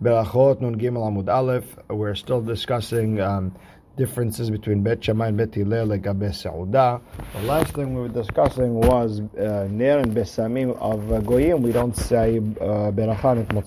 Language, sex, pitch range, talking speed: English, male, 100-120 Hz, 150 wpm